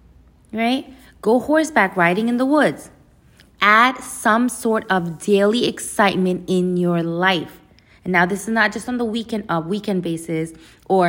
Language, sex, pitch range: English, female, 165-220 Hz